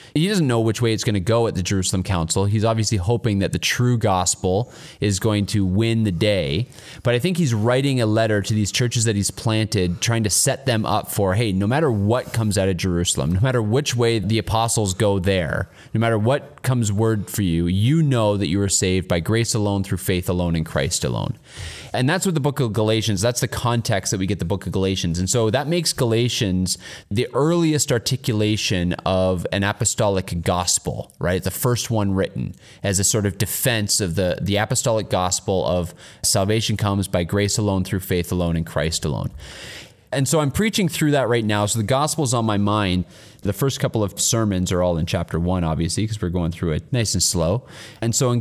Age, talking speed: 30-49, 215 wpm